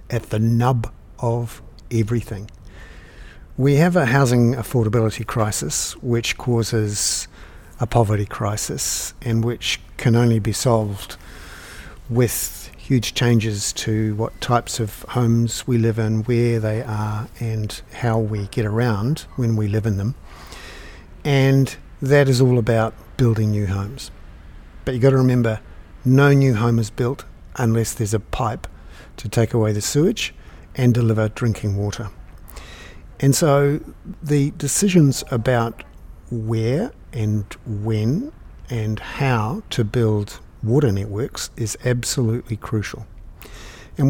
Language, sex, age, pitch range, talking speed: English, male, 50-69, 105-125 Hz, 130 wpm